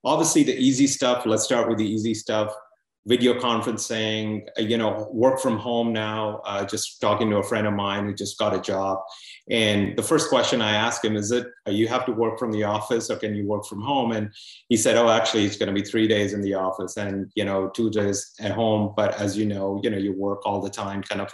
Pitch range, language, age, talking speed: 105-115 Hz, English, 30-49, 245 wpm